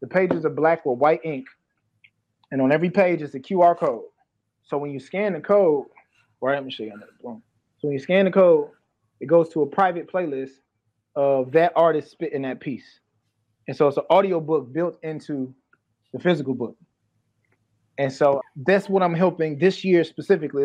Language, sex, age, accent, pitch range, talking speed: English, male, 20-39, American, 140-190 Hz, 190 wpm